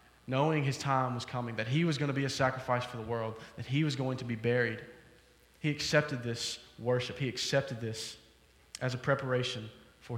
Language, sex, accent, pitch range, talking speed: English, male, American, 120-155 Hz, 200 wpm